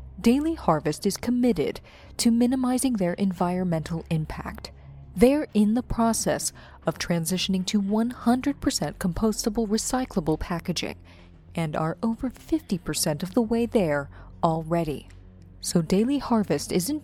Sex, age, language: female, 20-39, English